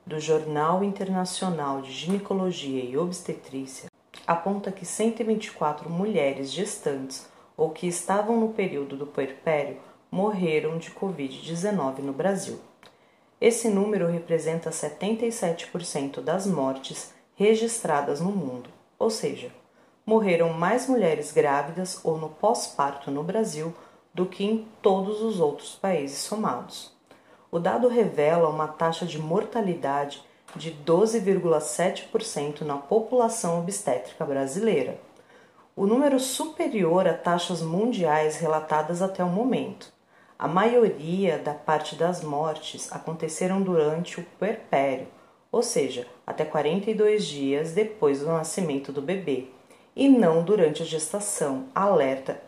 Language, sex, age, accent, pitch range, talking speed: Portuguese, female, 40-59, Brazilian, 155-205 Hz, 115 wpm